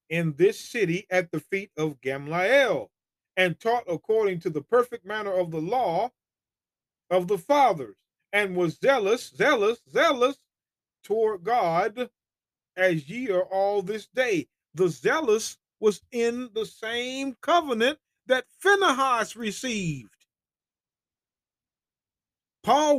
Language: English